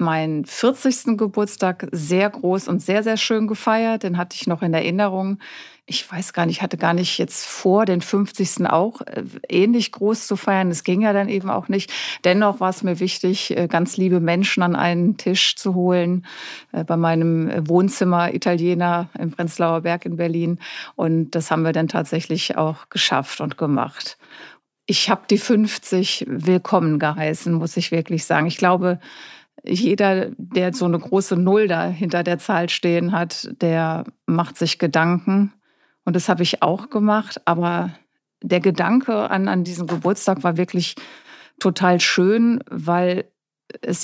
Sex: female